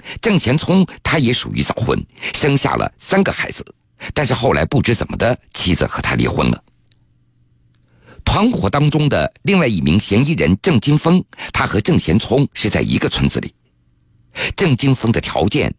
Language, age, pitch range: Chinese, 50-69, 115-150 Hz